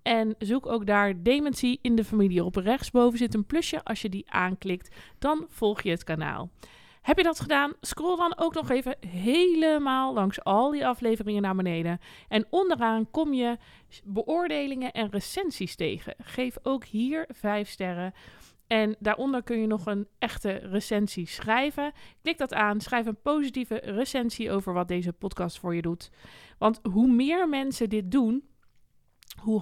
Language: Dutch